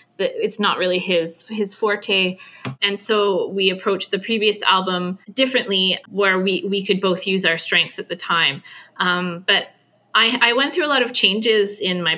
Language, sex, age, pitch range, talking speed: English, female, 20-39, 180-215 Hz, 180 wpm